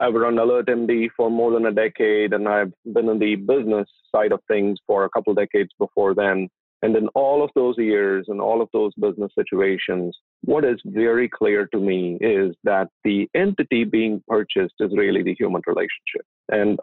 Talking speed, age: 195 wpm, 40-59